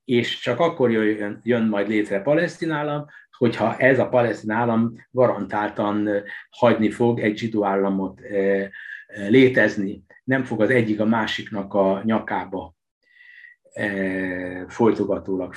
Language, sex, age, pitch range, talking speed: Hungarian, male, 60-79, 105-130 Hz, 115 wpm